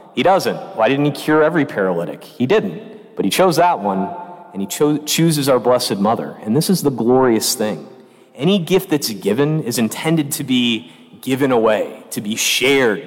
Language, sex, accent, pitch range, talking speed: English, male, American, 125-160 Hz, 185 wpm